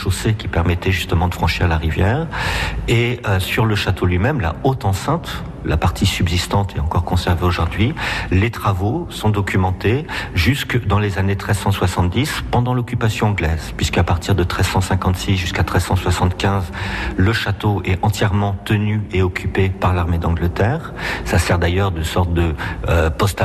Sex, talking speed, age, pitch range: male, 155 wpm, 50-69, 90-110 Hz